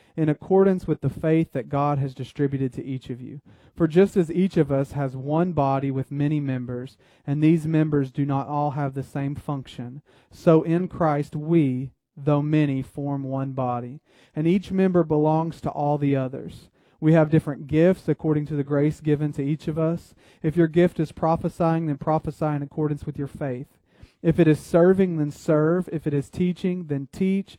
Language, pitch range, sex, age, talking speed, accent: English, 140-165 Hz, male, 40-59, 195 wpm, American